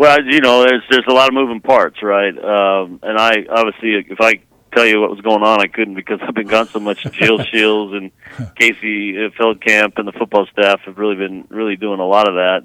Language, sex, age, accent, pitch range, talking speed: English, male, 40-59, American, 95-110 Hz, 230 wpm